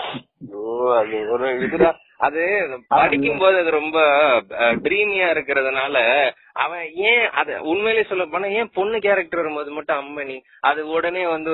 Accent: native